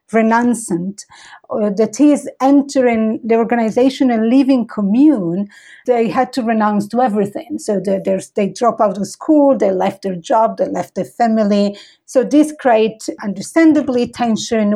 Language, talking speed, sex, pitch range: English, 140 wpm, female, 205-255 Hz